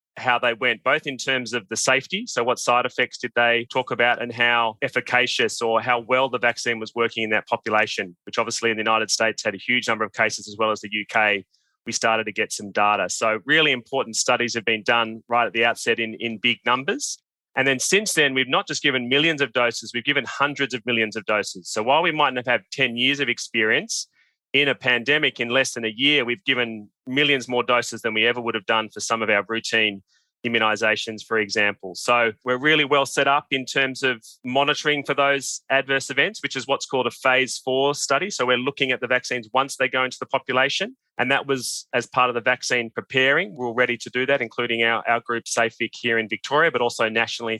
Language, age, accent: English, 30-49, Australian